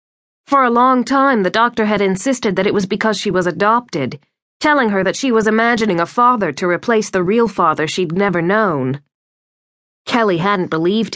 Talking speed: 185 wpm